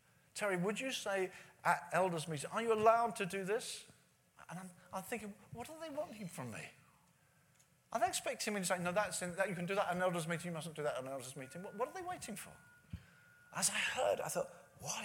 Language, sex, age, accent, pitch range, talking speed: English, male, 40-59, British, 165-225 Hz, 245 wpm